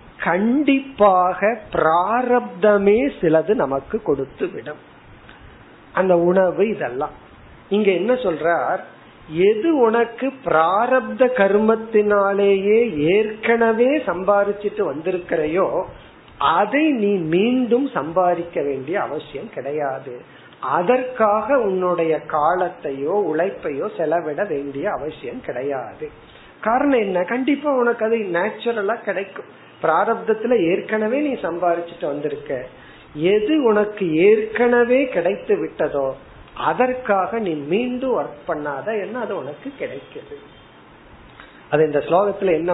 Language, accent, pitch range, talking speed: Tamil, native, 165-235 Hz, 60 wpm